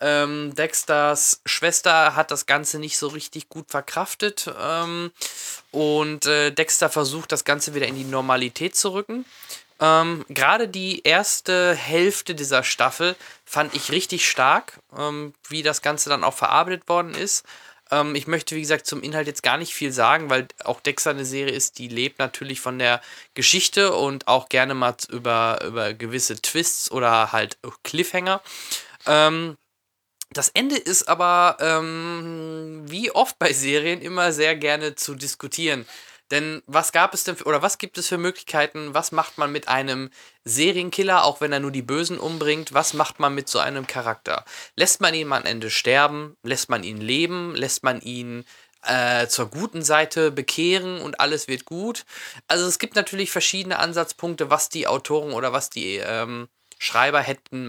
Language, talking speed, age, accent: German, 170 wpm, 20-39, German